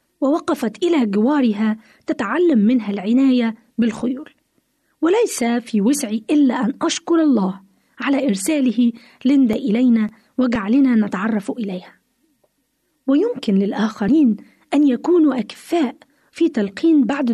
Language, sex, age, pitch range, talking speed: Arabic, female, 20-39, 225-295 Hz, 100 wpm